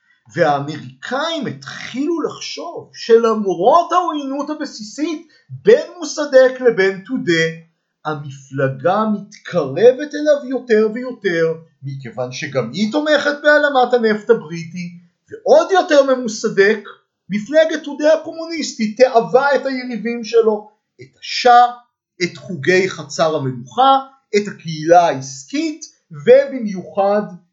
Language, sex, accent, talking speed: Hebrew, male, native, 90 wpm